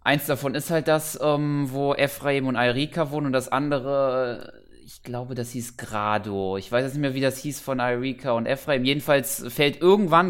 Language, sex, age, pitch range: German, male, 20-39, 120-140 Hz